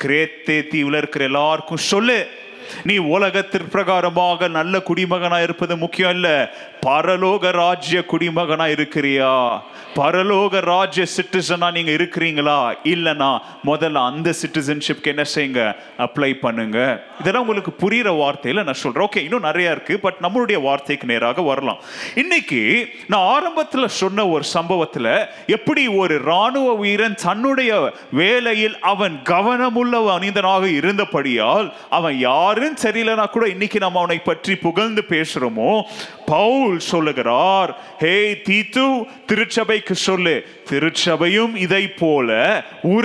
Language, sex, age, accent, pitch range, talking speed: Tamil, male, 30-49, native, 155-215 Hz, 70 wpm